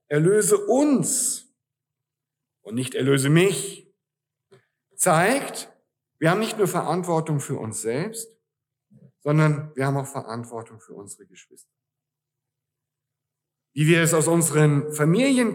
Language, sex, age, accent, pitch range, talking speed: German, male, 50-69, German, 130-180 Hz, 110 wpm